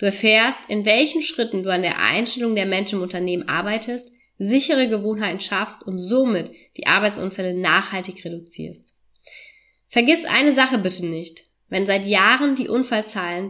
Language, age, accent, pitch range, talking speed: German, 20-39, German, 185-225 Hz, 145 wpm